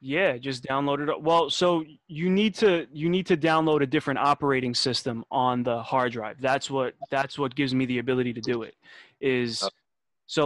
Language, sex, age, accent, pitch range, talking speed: English, male, 20-39, American, 130-160 Hz, 195 wpm